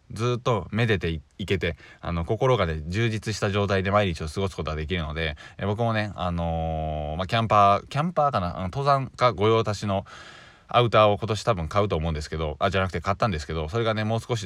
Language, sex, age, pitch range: Japanese, male, 20-39, 85-115 Hz